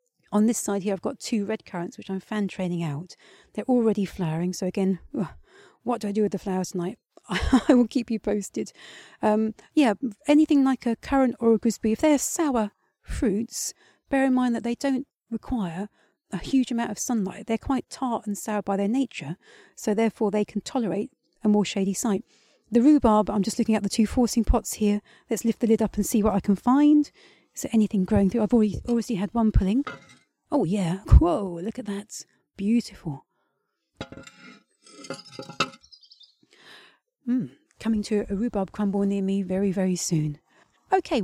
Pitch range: 195-240 Hz